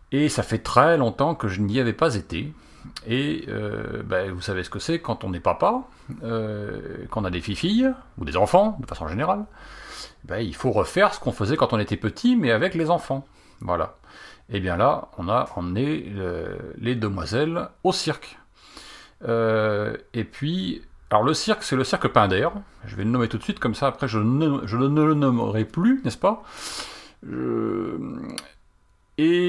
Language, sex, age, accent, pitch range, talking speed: French, male, 40-59, French, 110-165 Hz, 190 wpm